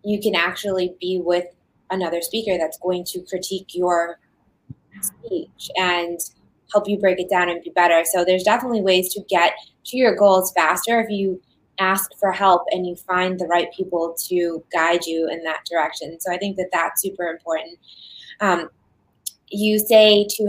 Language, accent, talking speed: English, American, 175 wpm